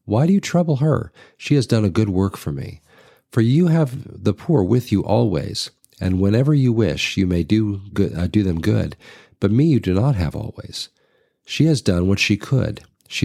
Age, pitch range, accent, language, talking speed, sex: 50-69, 90-130 Hz, American, English, 215 wpm, male